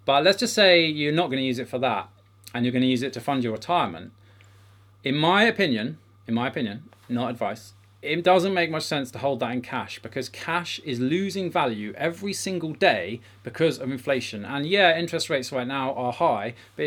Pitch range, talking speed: 110-145 Hz, 205 wpm